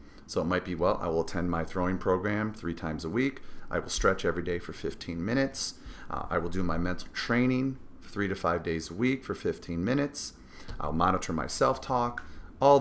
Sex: male